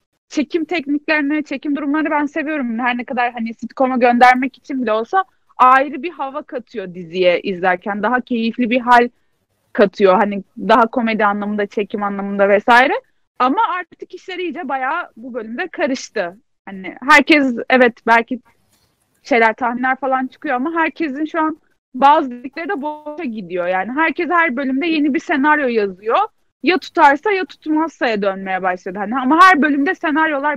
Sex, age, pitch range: female, 30-49, 230-310 Hz